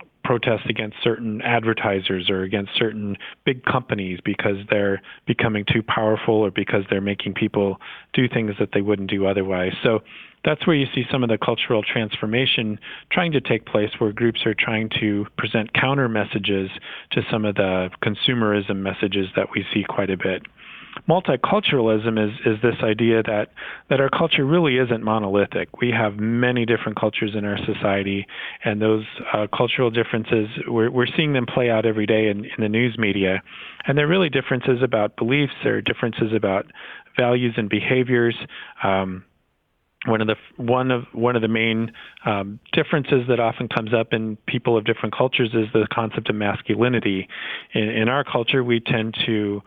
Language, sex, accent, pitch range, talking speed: English, male, American, 105-120 Hz, 175 wpm